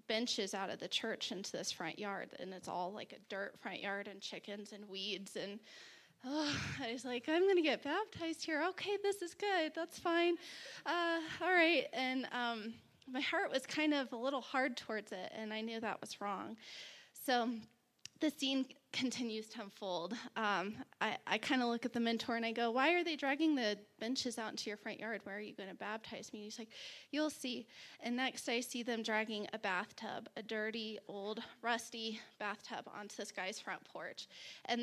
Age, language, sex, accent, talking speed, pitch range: 20-39, English, female, American, 200 wpm, 210-270 Hz